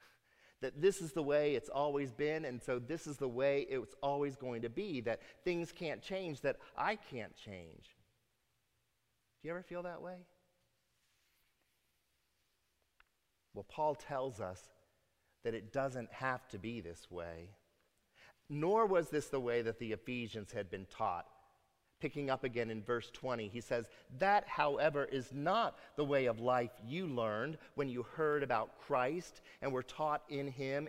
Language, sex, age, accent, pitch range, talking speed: English, male, 40-59, American, 110-150 Hz, 165 wpm